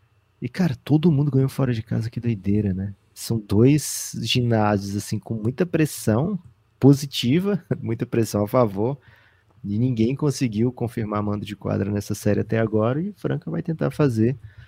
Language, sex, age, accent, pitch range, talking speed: Portuguese, male, 20-39, Brazilian, 100-125 Hz, 165 wpm